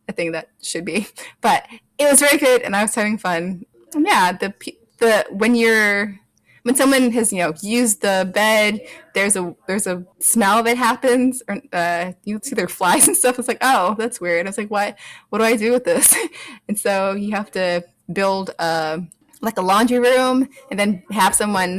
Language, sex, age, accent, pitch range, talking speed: English, female, 20-39, American, 180-255 Hz, 205 wpm